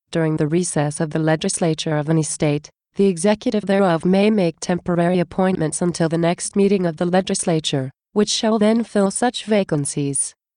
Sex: female